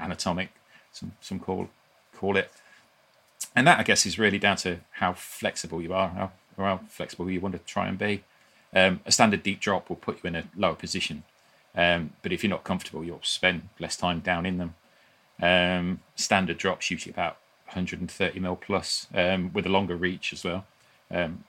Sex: male